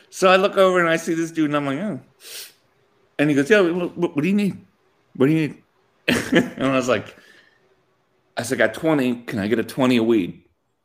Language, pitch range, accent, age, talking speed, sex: English, 135-195 Hz, American, 40-59, 230 wpm, male